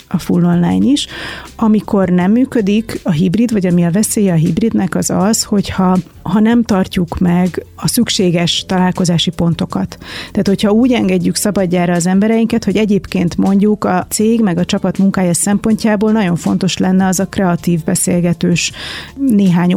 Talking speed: 155 wpm